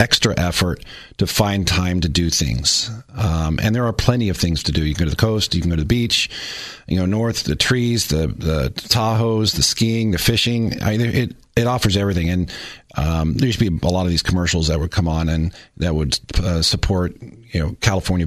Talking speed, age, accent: 225 wpm, 40-59, American